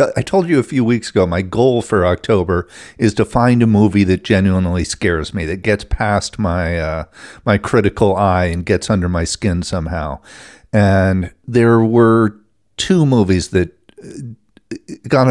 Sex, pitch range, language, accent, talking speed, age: male, 95-120 Hz, English, American, 160 wpm, 40-59